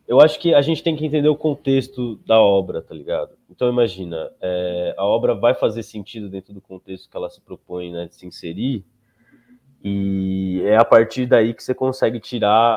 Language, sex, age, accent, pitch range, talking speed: Portuguese, male, 20-39, Brazilian, 95-120 Hz, 195 wpm